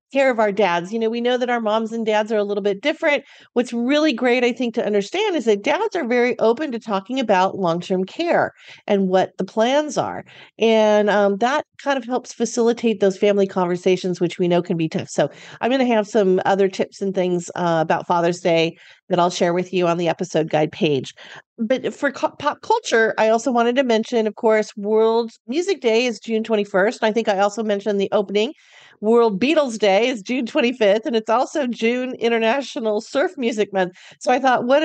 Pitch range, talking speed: 185-240 Hz, 210 wpm